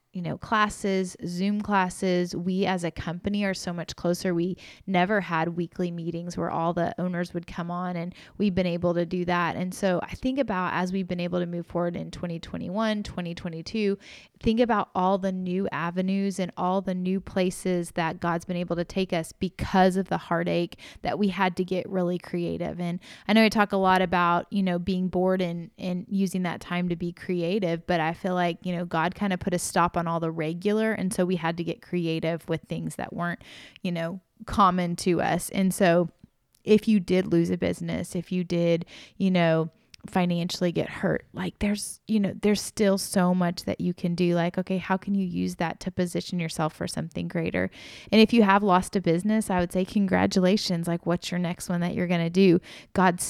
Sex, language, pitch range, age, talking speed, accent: female, English, 170-195 Hz, 20-39, 215 wpm, American